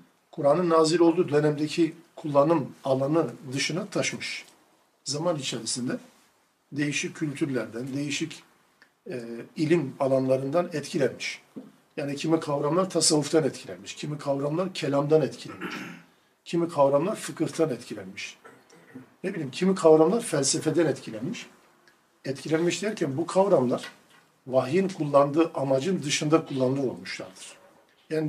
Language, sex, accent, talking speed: Turkish, male, native, 100 wpm